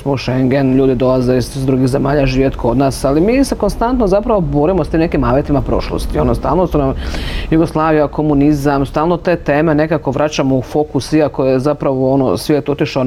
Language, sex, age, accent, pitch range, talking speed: Croatian, female, 40-59, native, 135-165 Hz, 185 wpm